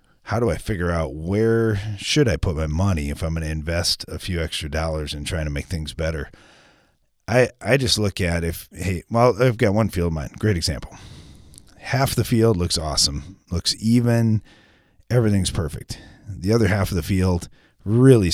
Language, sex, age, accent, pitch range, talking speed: English, male, 30-49, American, 80-110 Hz, 190 wpm